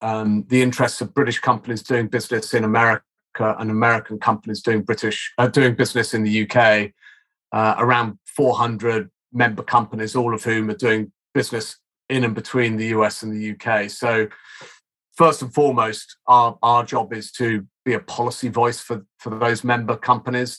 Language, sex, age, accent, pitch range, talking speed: English, male, 40-59, British, 110-125 Hz, 170 wpm